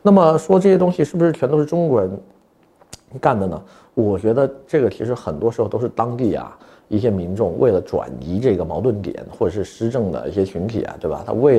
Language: Chinese